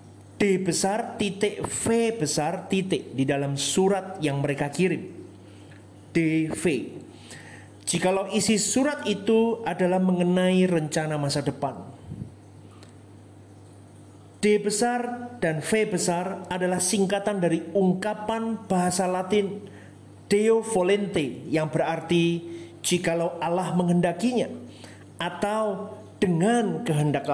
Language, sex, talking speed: Indonesian, male, 95 wpm